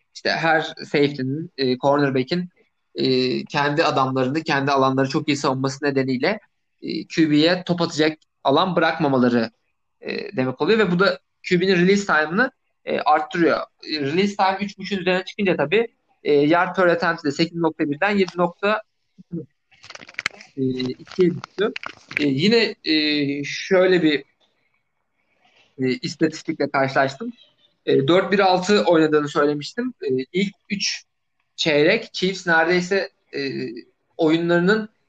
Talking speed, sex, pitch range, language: 105 wpm, male, 145-195 Hz, Turkish